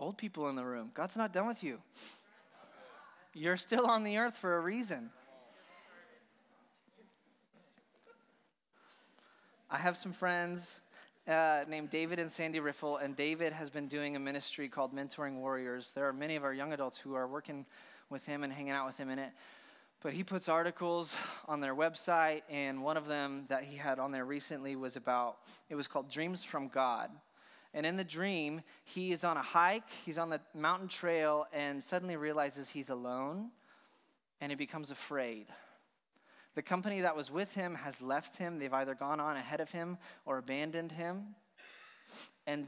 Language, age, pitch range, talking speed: English, 20-39, 140-180 Hz, 175 wpm